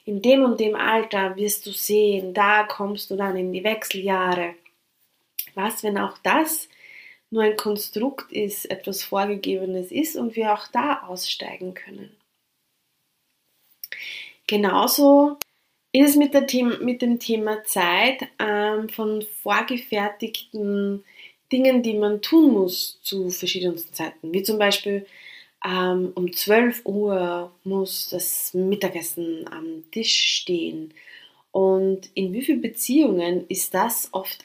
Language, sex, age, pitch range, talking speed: German, female, 20-39, 185-230 Hz, 120 wpm